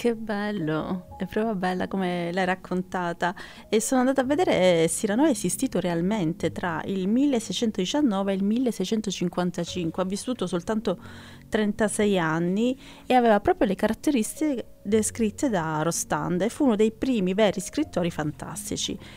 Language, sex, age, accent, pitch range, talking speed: Italian, female, 30-49, native, 175-225 Hz, 140 wpm